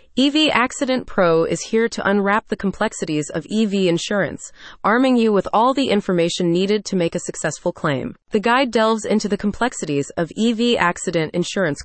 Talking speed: 170 wpm